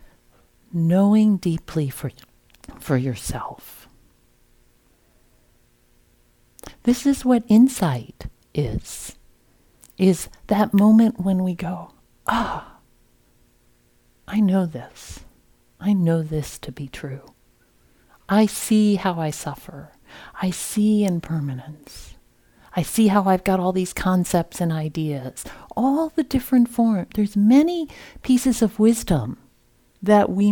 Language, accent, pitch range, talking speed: English, American, 125-195 Hz, 110 wpm